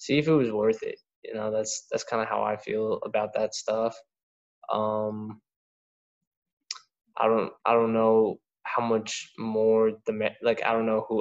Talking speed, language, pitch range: 175 wpm, English, 110-120 Hz